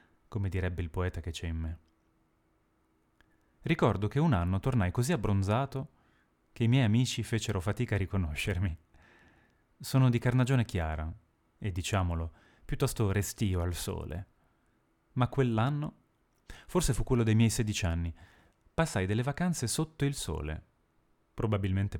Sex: male